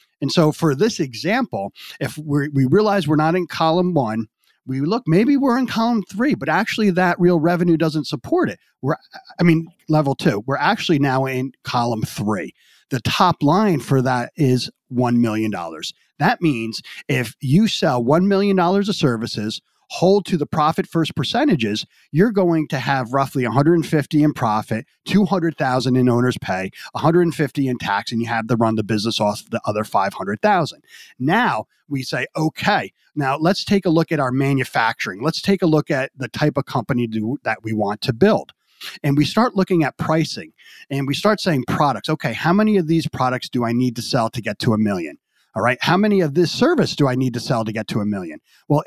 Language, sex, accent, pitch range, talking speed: English, male, American, 125-175 Hz, 195 wpm